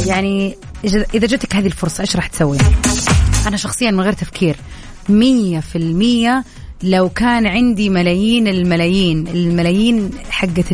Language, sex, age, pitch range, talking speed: Arabic, female, 30-49, 160-210 Hz, 115 wpm